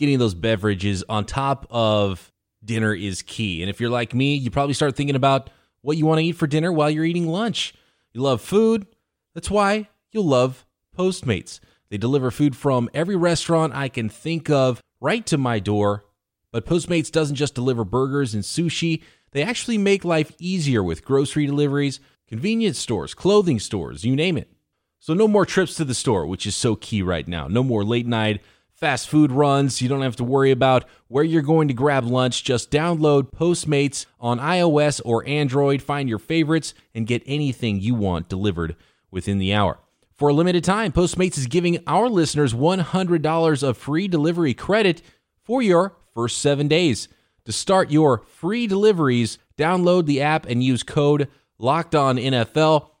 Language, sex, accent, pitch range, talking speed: English, male, American, 115-165 Hz, 180 wpm